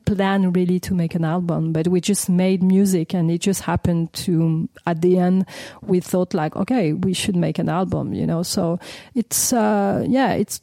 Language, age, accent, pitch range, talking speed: English, 40-59, French, 175-205 Hz, 200 wpm